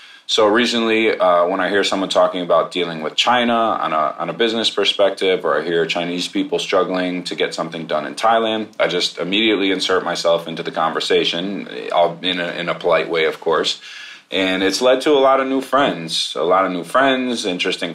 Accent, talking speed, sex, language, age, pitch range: American, 205 wpm, male, English, 30-49, 85-100 Hz